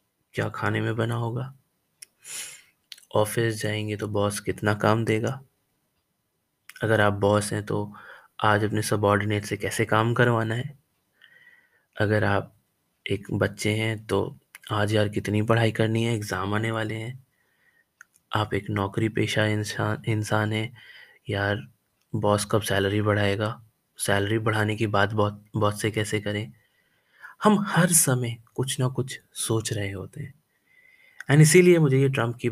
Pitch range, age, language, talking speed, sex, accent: 105-135 Hz, 20-39, Hindi, 145 wpm, male, native